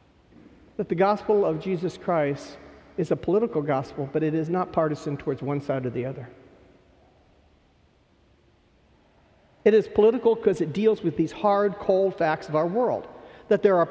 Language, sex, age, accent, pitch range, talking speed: English, male, 50-69, American, 165-230 Hz, 165 wpm